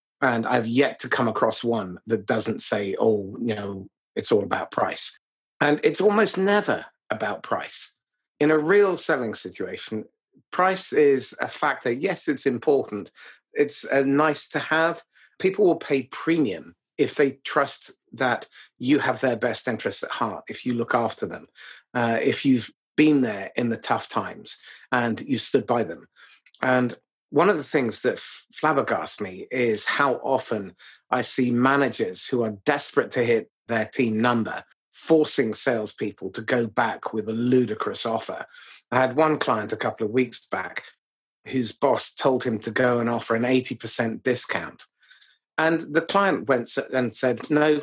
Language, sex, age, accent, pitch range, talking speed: English, male, 40-59, British, 120-150 Hz, 165 wpm